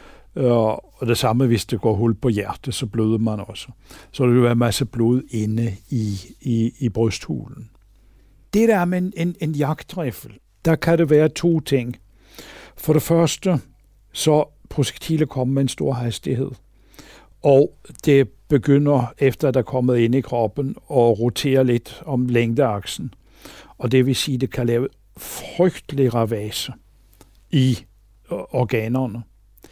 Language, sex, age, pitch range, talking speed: Danish, male, 60-79, 110-140 Hz, 155 wpm